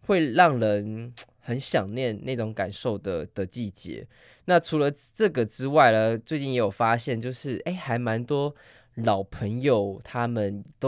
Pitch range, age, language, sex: 110-140 Hz, 10-29, Chinese, male